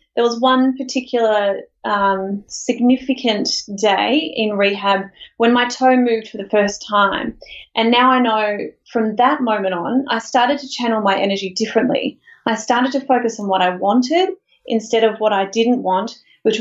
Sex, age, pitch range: female, 30-49, 200-255 Hz